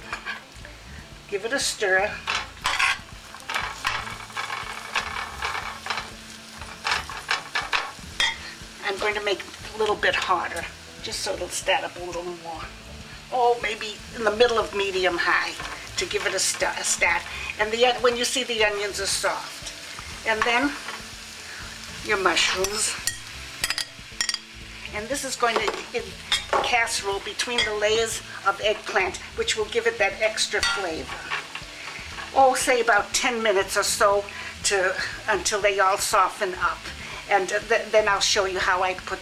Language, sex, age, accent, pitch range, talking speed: English, female, 60-79, American, 195-245 Hz, 140 wpm